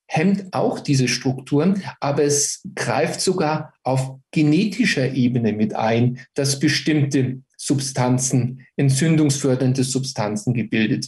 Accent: German